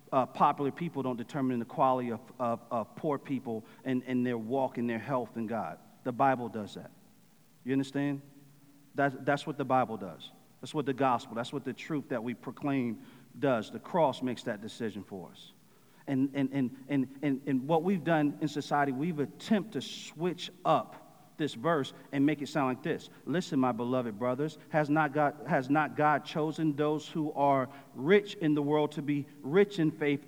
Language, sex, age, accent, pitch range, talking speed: English, male, 40-59, American, 135-160 Hz, 195 wpm